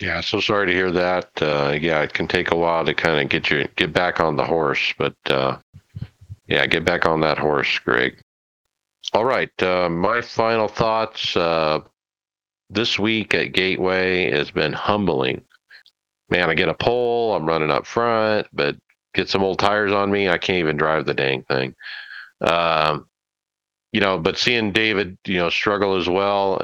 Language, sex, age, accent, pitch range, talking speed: English, male, 50-69, American, 80-105 Hz, 180 wpm